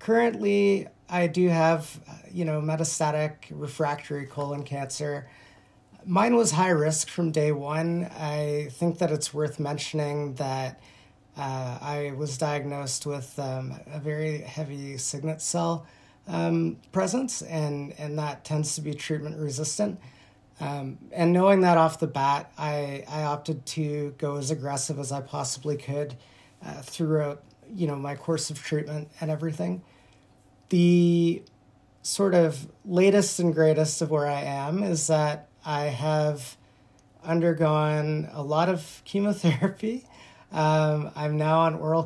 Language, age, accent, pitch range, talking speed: English, 30-49, American, 140-165 Hz, 140 wpm